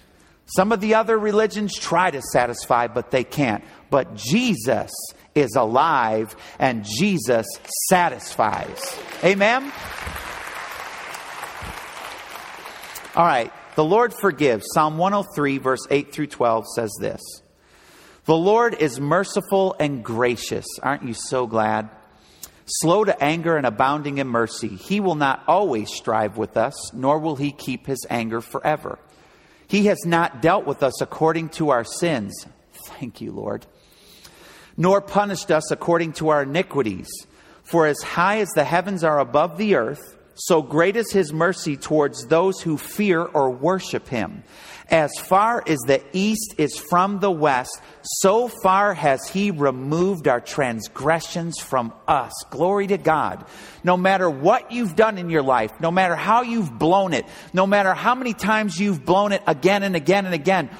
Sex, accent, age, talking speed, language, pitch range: male, American, 50-69, 150 wpm, English, 145-200 Hz